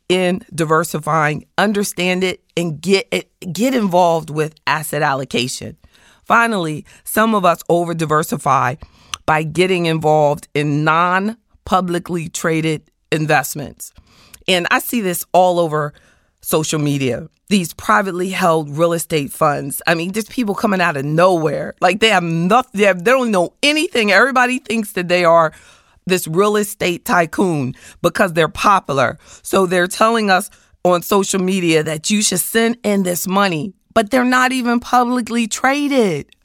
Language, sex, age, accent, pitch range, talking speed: English, female, 40-59, American, 165-230 Hz, 145 wpm